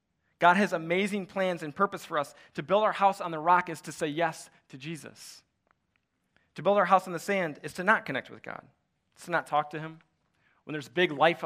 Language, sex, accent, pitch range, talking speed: English, male, American, 140-180 Hz, 230 wpm